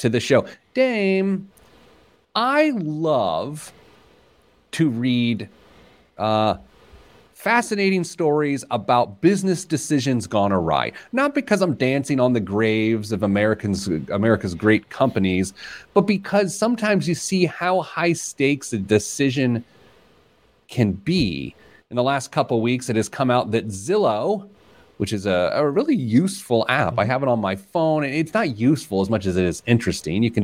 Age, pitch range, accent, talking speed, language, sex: 30-49, 100-160 Hz, American, 150 wpm, English, male